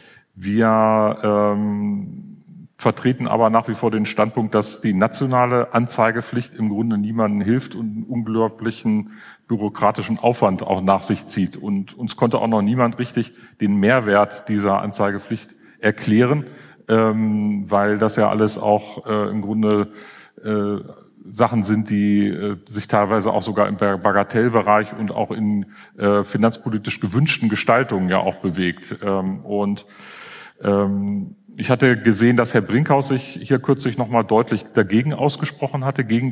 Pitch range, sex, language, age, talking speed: 105-125 Hz, male, German, 40-59, 140 wpm